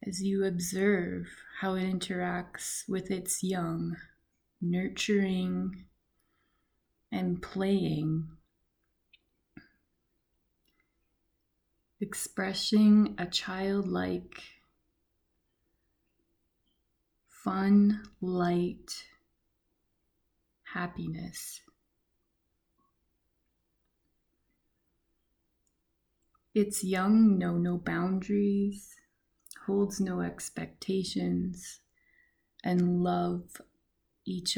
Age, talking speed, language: 20-39, 50 wpm, English